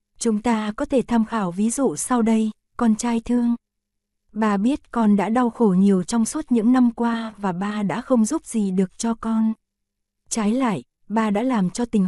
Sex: female